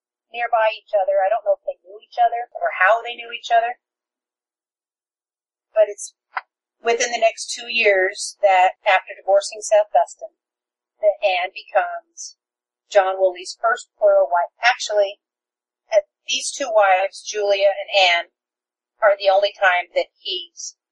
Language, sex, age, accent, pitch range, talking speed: English, female, 40-59, American, 190-310 Hz, 145 wpm